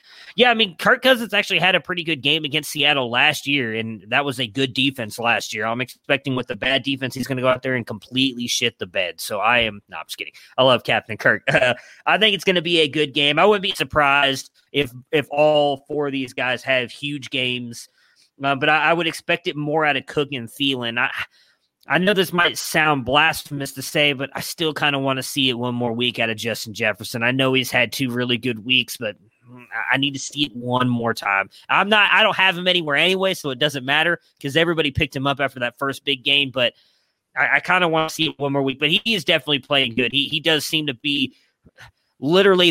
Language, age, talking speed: English, 30-49, 250 wpm